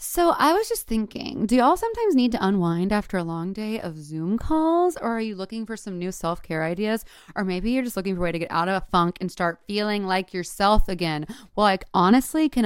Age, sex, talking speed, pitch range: 20-39, female, 240 wpm, 175-235 Hz